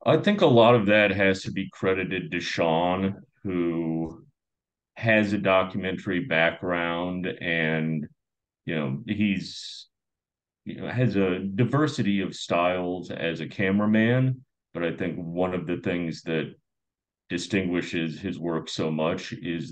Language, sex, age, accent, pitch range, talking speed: English, male, 40-59, American, 80-100 Hz, 135 wpm